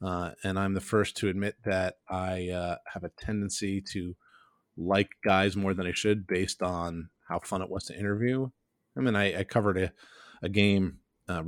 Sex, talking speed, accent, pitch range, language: male, 195 wpm, American, 95-110 Hz, English